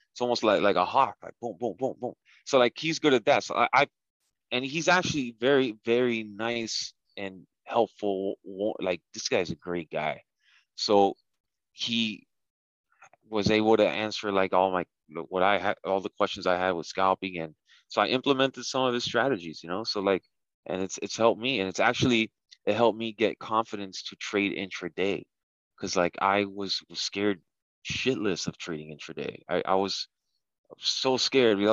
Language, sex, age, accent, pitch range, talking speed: English, male, 20-39, American, 95-115 Hz, 185 wpm